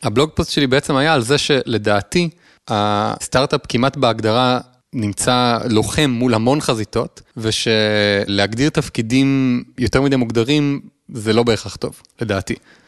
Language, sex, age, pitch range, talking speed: English, male, 30-49, 110-135 Hz, 120 wpm